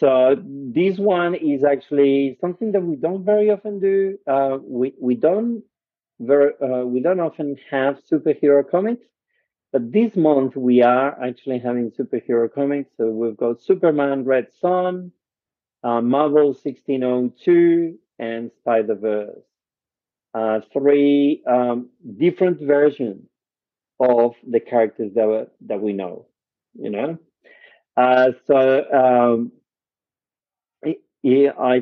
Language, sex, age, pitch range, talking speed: English, male, 50-69, 120-155 Hz, 120 wpm